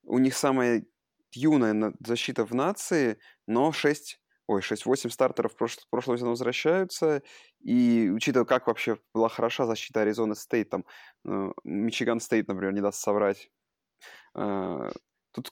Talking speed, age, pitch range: 120 wpm, 20-39, 115-140 Hz